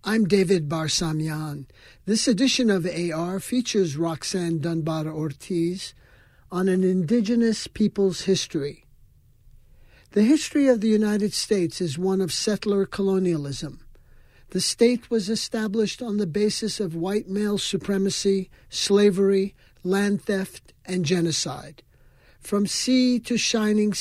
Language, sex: English, male